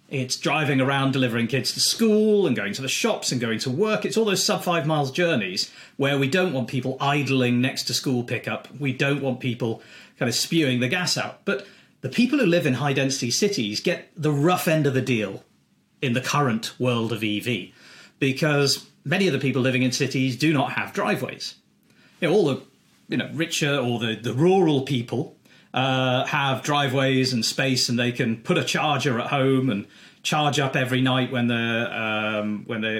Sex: male